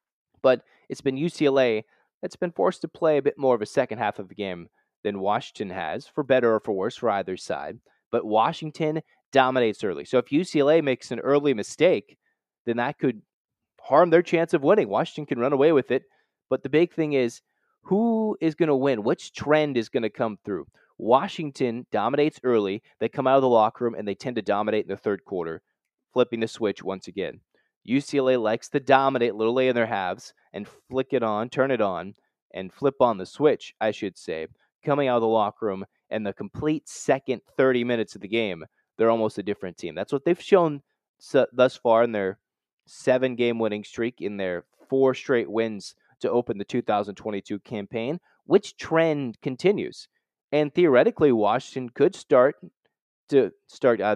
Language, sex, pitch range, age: English, male, 110-145 Hz, 30-49